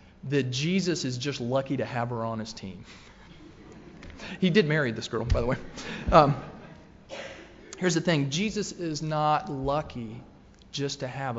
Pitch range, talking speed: 110-155 Hz, 160 wpm